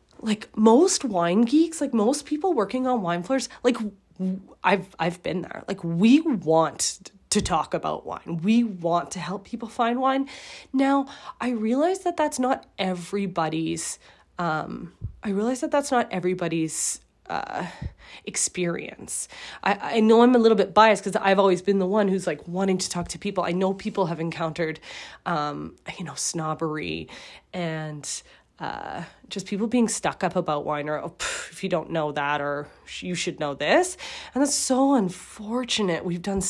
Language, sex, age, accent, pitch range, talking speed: English, female, 20-39, American, 170-240 Hz, 170 wpm